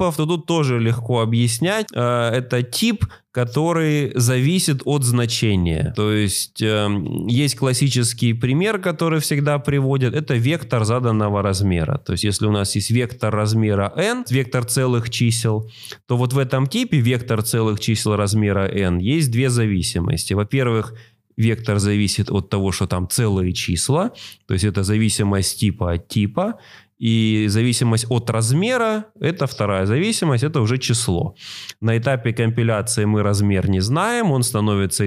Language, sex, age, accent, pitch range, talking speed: Russian, male, 20-39, native, 105-135 Hz, 140 wpm